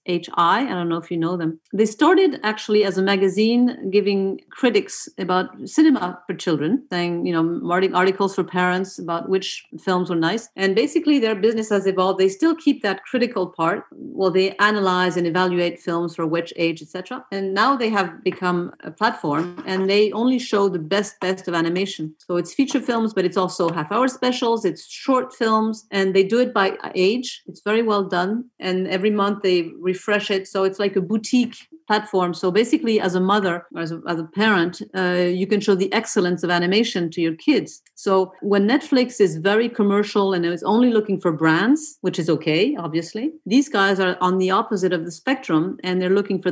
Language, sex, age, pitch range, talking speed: English, female, 40-59, 175-220 Hz, 200 wpm